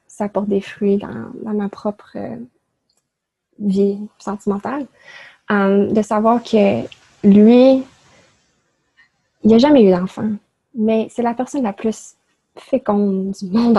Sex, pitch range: female, 200-225 Hz